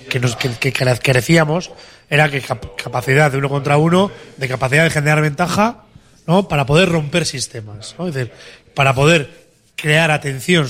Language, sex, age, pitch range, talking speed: Spanish, male, 30-49, 130-155 Hz, 165 wpm